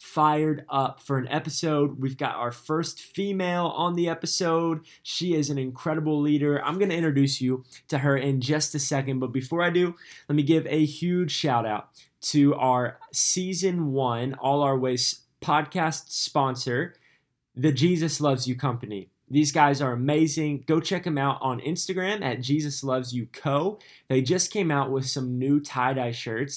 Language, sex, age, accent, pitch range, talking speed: English, male, 20-39, American, 130-160 Hz, 175 wpm